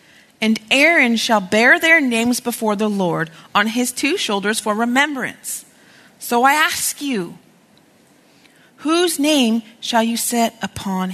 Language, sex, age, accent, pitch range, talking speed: English, female, 40-59, American, 220-300 Hz, 135 wpm